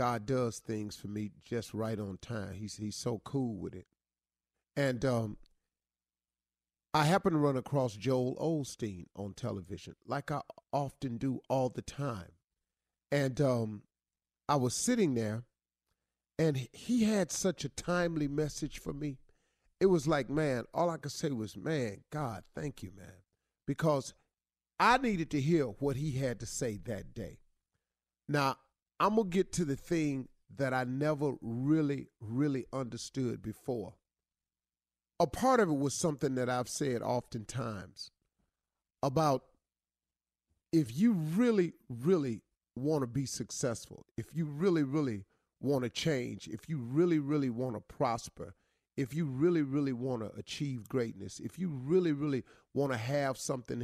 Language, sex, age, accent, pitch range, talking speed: English, male, 40-59, American, 105-150 Hz, 155 wpm